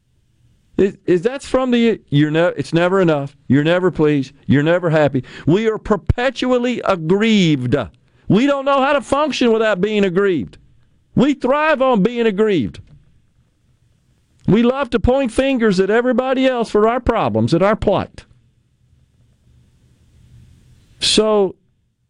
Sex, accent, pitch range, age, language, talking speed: male, American, 155-250 Hz, 50-69, English, 135 wpm